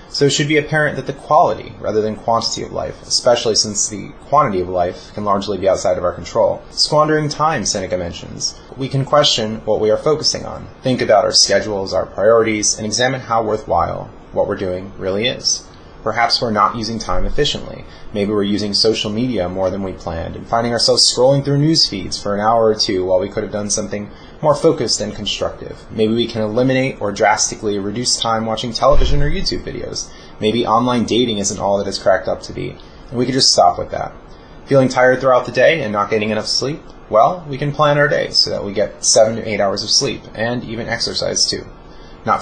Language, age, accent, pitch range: English, 30-49, American, 105-130 Hz